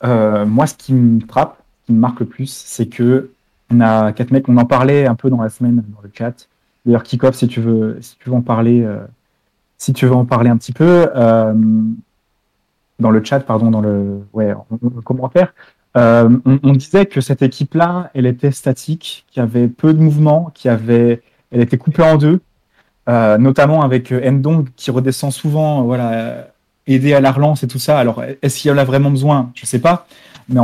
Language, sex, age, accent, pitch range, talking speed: French, male, 30-49, French, 120-145 Hz, 205 wpm